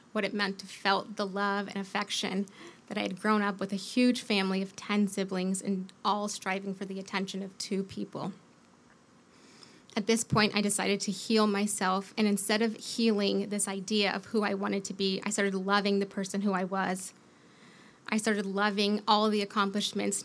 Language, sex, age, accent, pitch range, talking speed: English, female, 20-39, American, 195-210 Hz, 190 wpm